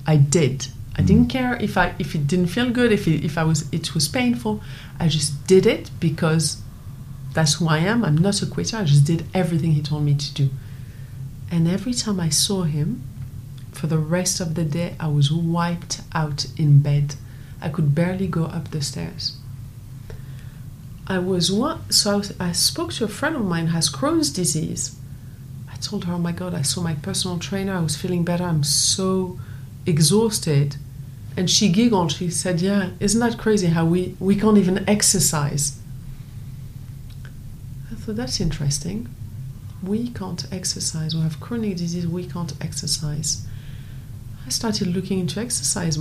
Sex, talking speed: female, 175 wpm